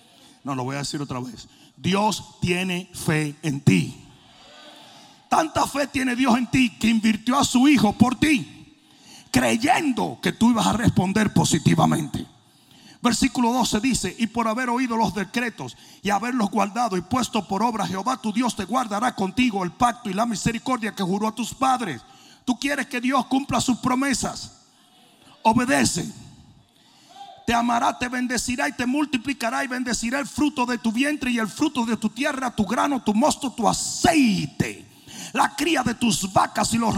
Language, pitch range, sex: Spanish, 210-260 Hz, male